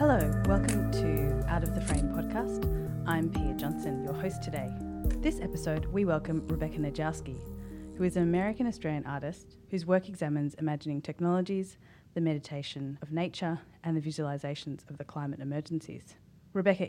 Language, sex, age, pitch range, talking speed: English, female, 30-49, 150-180 Hz, 150 wpm